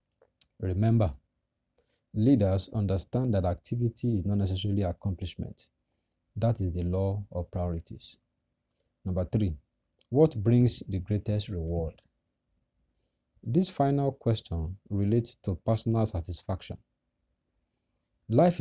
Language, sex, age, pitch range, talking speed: English, male, 40-59, 90-115 Hz, 95 wpm